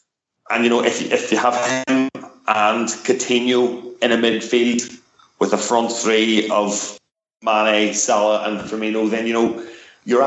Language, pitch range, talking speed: English, 100-115 Hz, 150 wpm